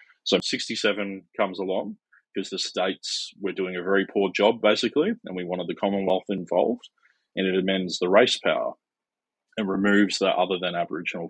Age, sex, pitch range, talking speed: 20-39, male, 90-100 Hz, 170 wpm